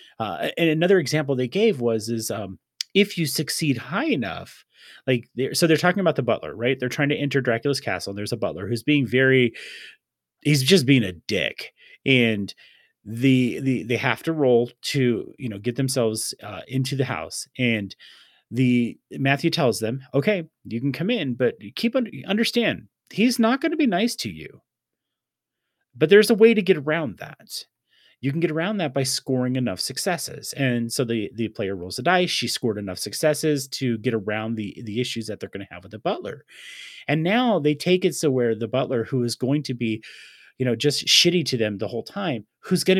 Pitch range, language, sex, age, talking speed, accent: 115-165 Hz, English, male, 30-49, 205 wpm, American